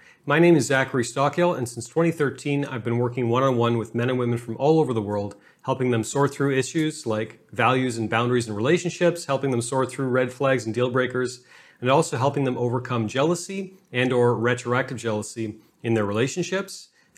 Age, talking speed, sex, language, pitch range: 30-49, 190 wpm, male, English, 115-140 Hz